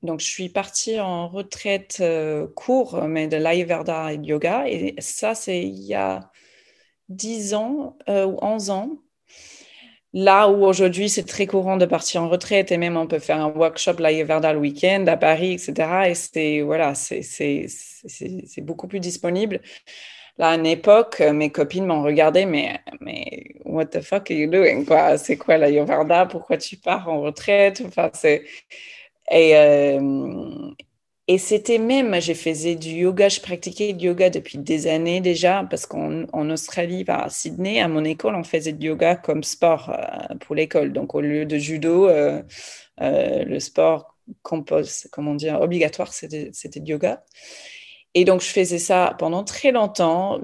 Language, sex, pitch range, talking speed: French, female, 155-195 Hz, 175 wpm